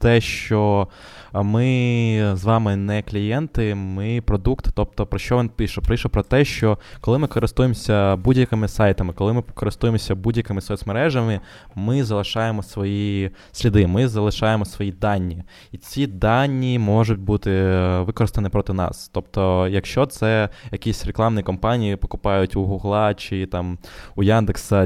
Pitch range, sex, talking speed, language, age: 100-115 Hz, male, 140 wpm, Ukrainian, 20-39